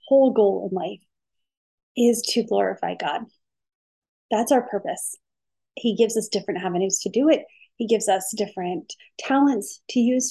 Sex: female